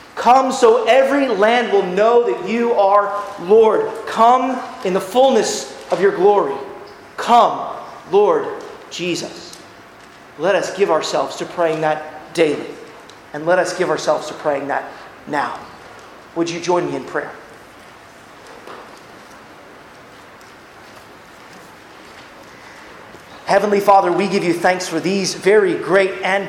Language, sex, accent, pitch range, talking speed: English, male, American, 185-240 Hz, 120 wpm